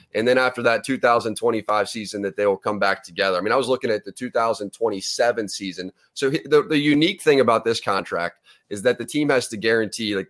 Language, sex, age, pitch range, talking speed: English, male, 30-49, 105-130 Hz, 215 wpm